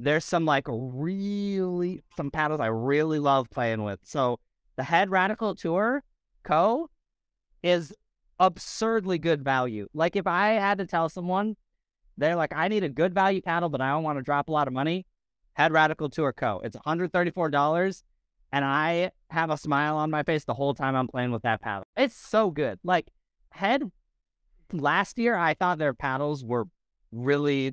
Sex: male